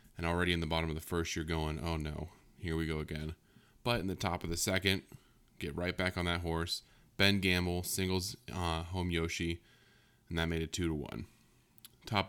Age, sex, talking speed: 20-39, male, 210 wpm